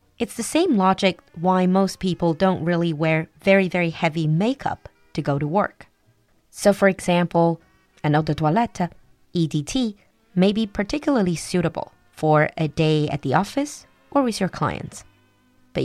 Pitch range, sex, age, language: 155-200 Hz, female, 20-39, Chinese